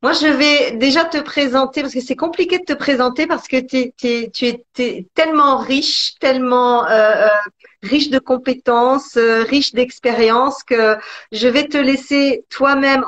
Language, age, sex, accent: French, 40-59, female, French